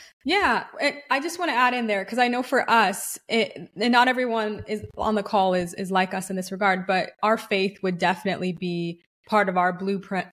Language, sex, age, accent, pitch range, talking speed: English, female, 20-39, American, 185-220 Hz, 220 wpm